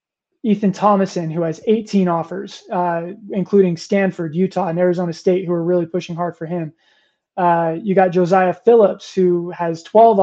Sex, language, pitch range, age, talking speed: male, English, 175-205 Hz, 20-39, 165 wpm